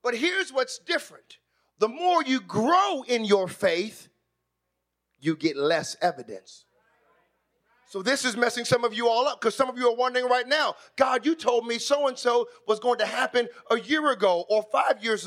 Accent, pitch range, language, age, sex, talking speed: American, 240-345 Hz, English, 40-59, male, 185 wpm